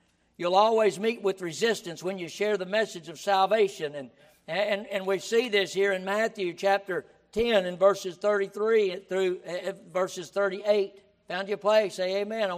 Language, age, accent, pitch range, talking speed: English, 60-79, American, 190-220 Hz, 165 wpm